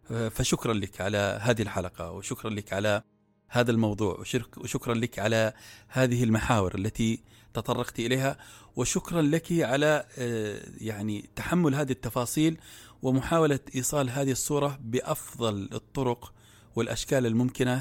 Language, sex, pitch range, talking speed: Arabic, male, 110-135 Hz, 110 wpm